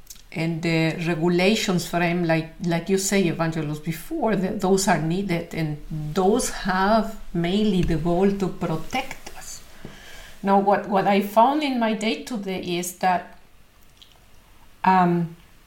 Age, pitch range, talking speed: 50-69, 190-240 Hz, 135 wpm